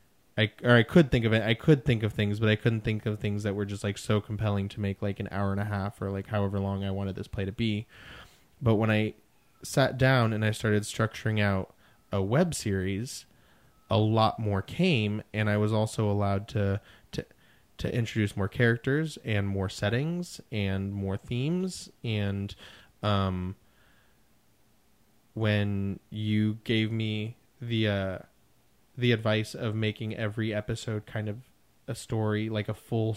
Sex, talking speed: male, 175 wpm